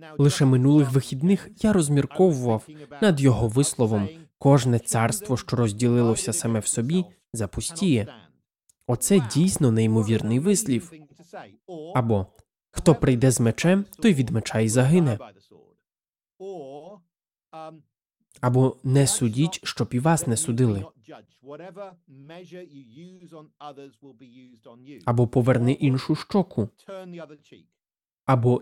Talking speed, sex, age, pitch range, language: 90 wpm, male, 20-39, 120-175 Hz, Russian